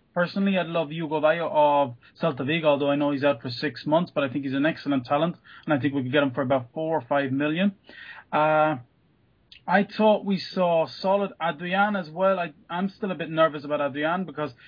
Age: 20-39